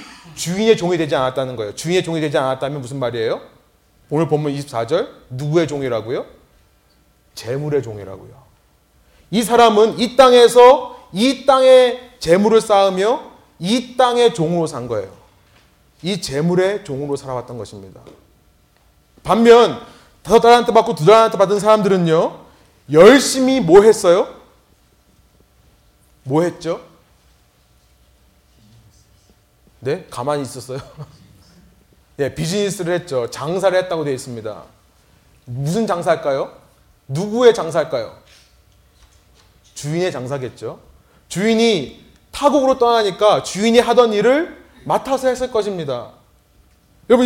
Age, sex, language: 30-49, male, Korean